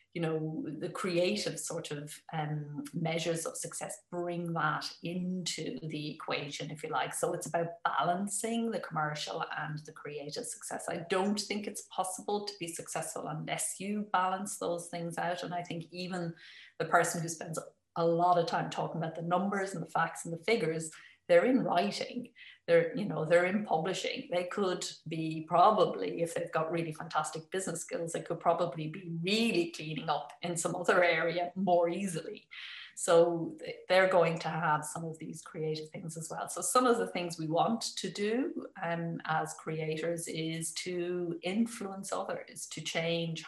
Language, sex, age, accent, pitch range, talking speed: English, female, 30-49, Irish, 160-185 Hz, 175 wpm